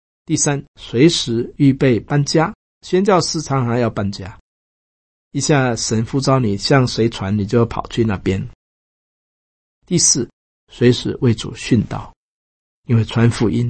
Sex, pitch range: male, 105-155 Hz